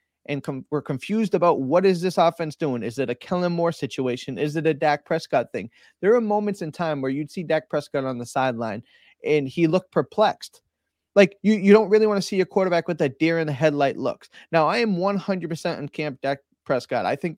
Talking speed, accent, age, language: 220 wpm, American, 30-49, English